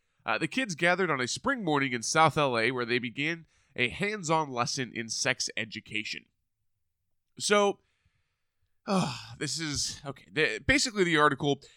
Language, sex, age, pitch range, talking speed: English, male, 20-39, 120-155 Hz, 150 wpm